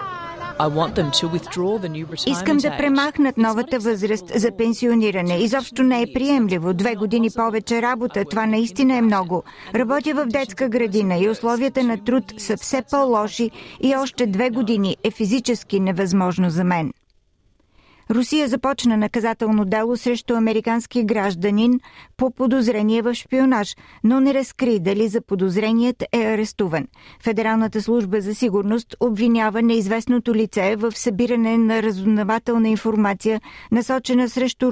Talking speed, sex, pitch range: 125 wpm, female, 205-240 Hz